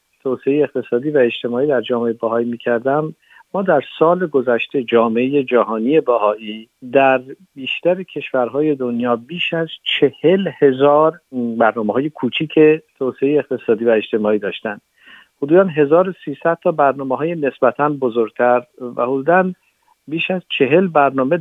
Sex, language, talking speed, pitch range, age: male, Persian, 120 wpm, 120-155 Hz, 50-69